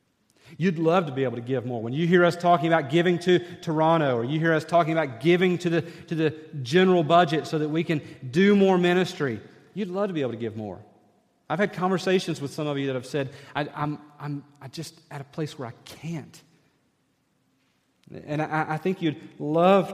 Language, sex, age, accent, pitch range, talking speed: English, male, 40-59, American, 130-160 Hz, 215 wpm